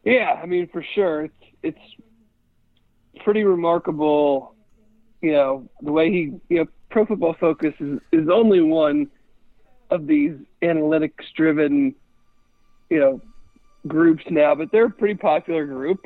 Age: 40-59